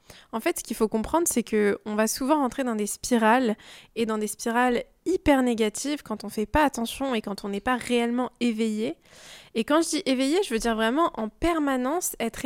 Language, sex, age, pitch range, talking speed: French, female, 20-39, 220-270 Hz, 215 wpm